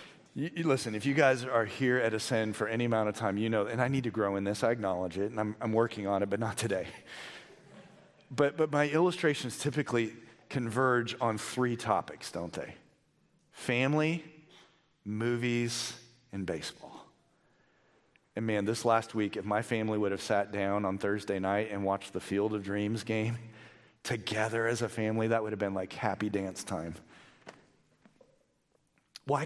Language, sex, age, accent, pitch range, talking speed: English, male, 40-59, American, 110-175 Hz, 175 wpm